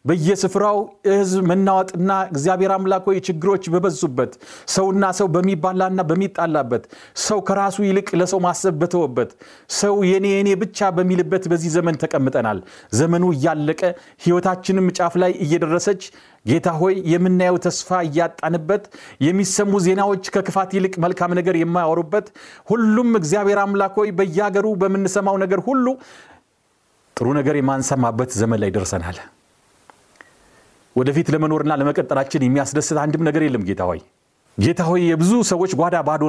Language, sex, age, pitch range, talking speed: Amharic, male, 40-59, 145-190 Hz, 115 wpm